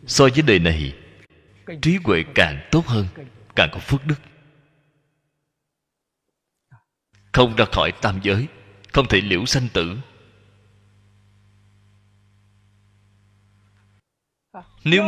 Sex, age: male, 20-39